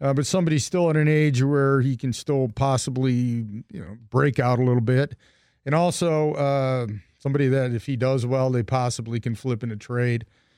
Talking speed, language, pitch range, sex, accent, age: 200 wpm, English, 120-140 Hz, male, American, 40-59